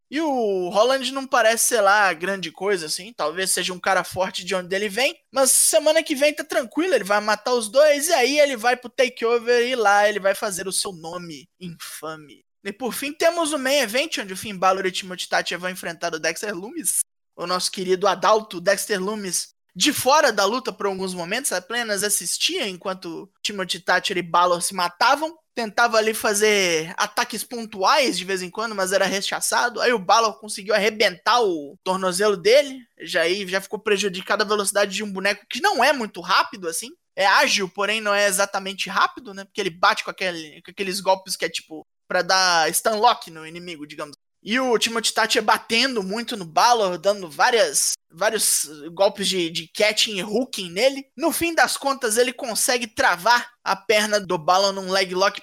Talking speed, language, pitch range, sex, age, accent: 195 wpm, Portuguese, 190-240 Hz, male, 20-39, Brazilian